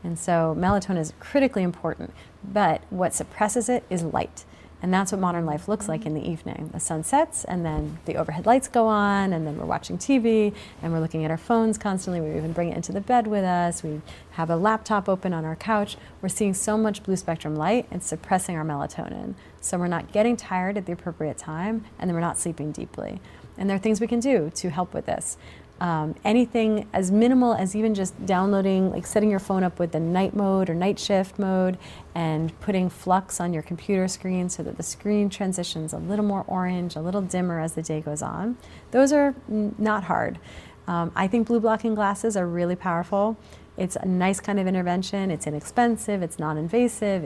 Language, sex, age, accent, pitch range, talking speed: English, female, 30-49, American, 170-210 Hz, 210 wpm